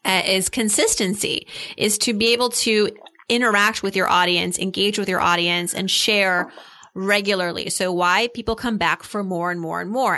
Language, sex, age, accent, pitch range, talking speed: English, female, 30-49, American, 175-215 Hz, 175 wpm